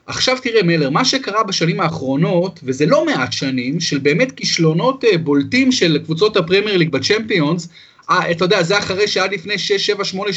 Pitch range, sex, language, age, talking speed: 165-225 Hz, male, Hebrew, 30-49, 160 wpm